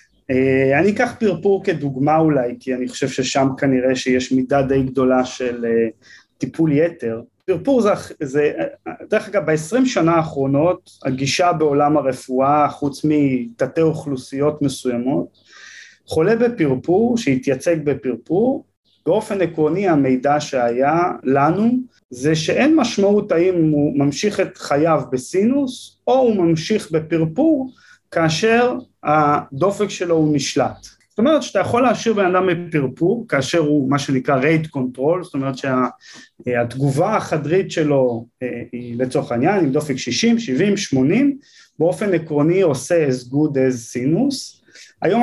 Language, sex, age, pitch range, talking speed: Hebrew, male, 30-49, 130-185 Hz, 130 wpm